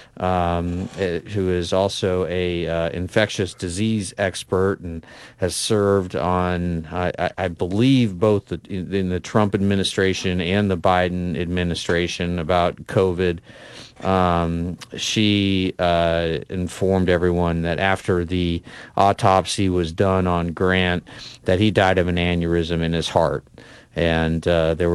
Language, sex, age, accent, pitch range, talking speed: English, male, 40-59, American, 85-100 Hz, 125 wpm